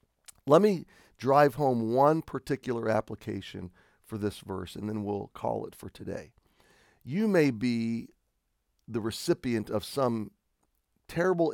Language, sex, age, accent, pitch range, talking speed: English, male, 40-59, American, 105-135 Hz, 130 wpm